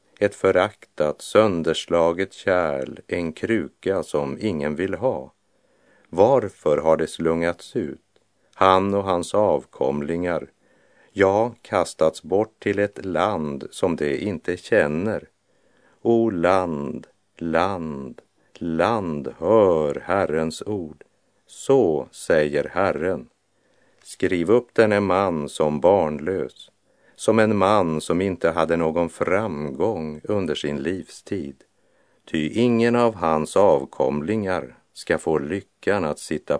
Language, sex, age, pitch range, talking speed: English, male, 50-69, 80-100 Hz, 110 wpm